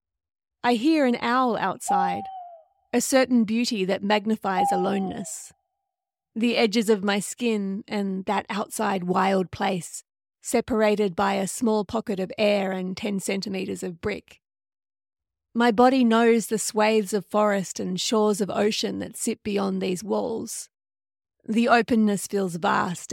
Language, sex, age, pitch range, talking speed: English, female, 30-49, 195-230 Hz, 135 wpm